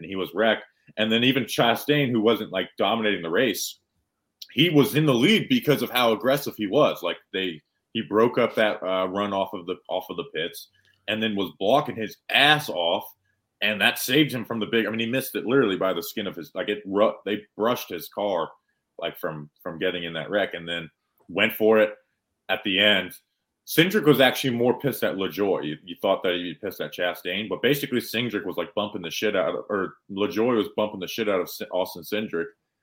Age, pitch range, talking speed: 30-49, 95-125 Hz, 225 wpm